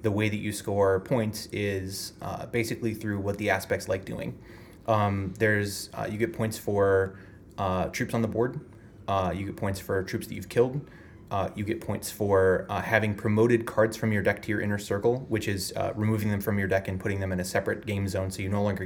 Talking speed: 230 wpm